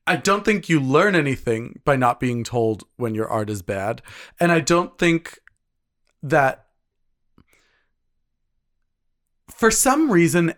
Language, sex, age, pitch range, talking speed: English, male, 30-49, 125-170 Hz, 130 wpm